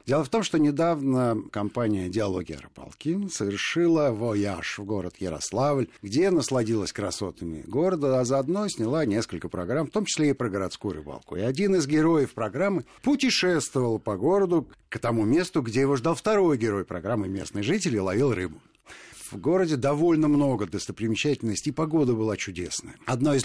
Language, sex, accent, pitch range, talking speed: Russian, male, native, 105-150 Hz, 160 wpm